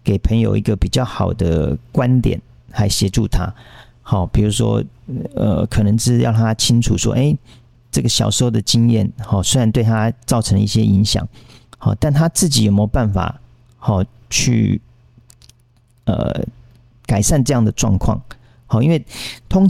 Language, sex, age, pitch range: Chinese, male, 40-59, 110-125 Hz